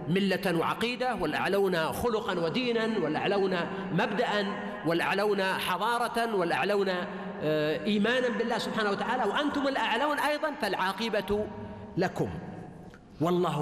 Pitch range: 175-235 Hz